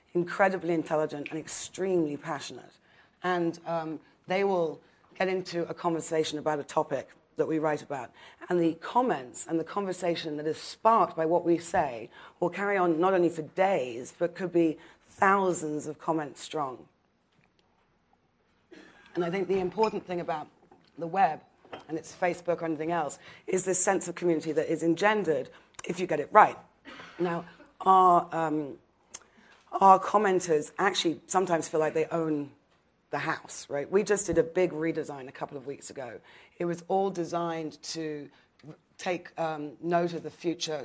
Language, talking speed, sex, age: English, 165 wpm, female, 30-49